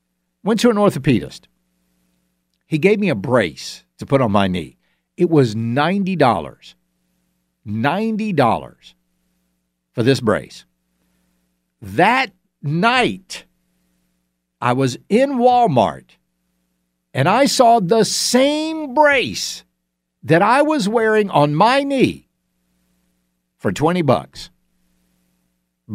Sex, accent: male, American